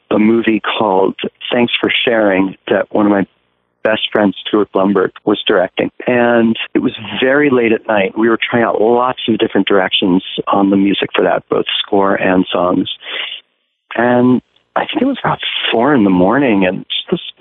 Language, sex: English, male